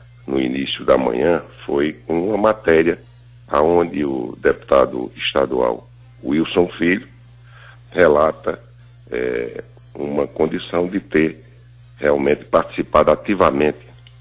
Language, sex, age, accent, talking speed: English, male, 60-79, Brazilian, 95 wpm